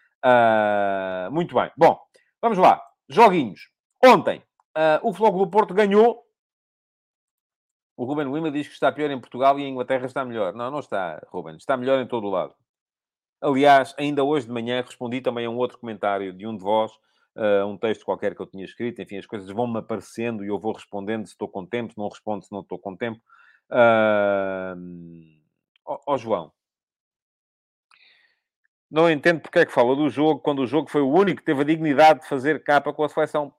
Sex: male